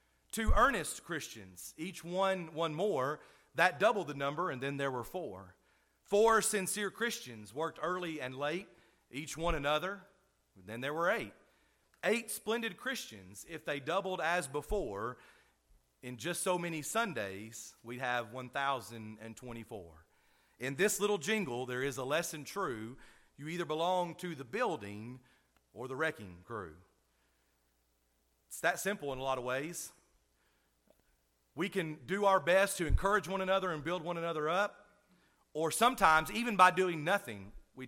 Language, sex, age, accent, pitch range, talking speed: English, male, 40-59, American, 125-190 Hz, 150 wpm